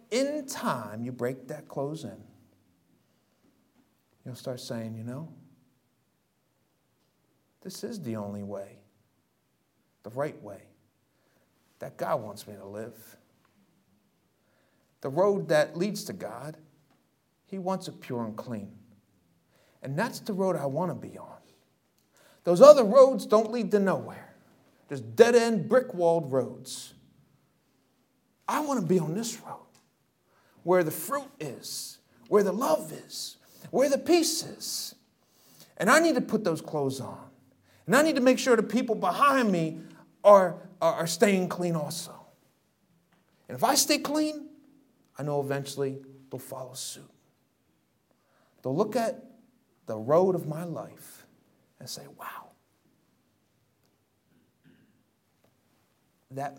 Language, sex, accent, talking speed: English, male, American, 130 wpm